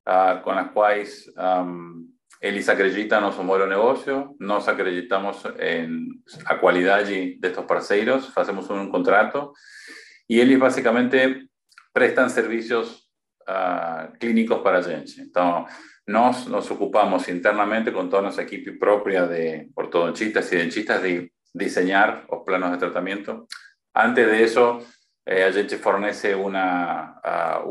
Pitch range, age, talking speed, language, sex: 90-115 Hz, 40-59, 135 wpm, Portuguese, male